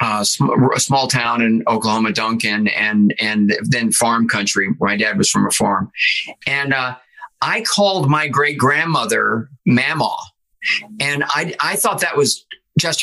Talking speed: 150 wpm